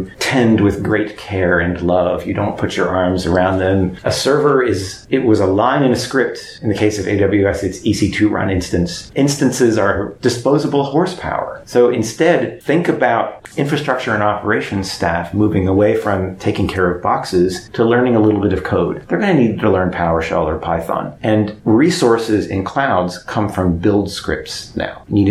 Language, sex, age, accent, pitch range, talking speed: English, male, 30-49, American, 90-105 Hz, 185 wpm